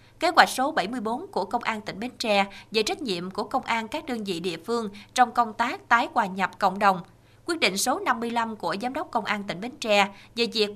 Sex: female